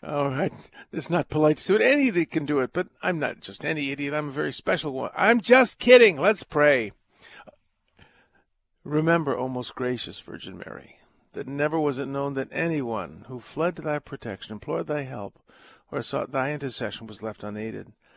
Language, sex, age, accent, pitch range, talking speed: English, male, 50-69, American, 115-170 Hz, 185 wpm